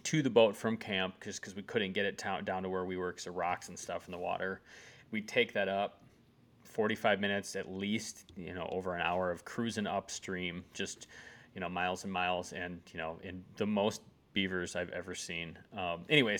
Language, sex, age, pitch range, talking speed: English, male, 20-39, 95-120 Hz, 210 wpm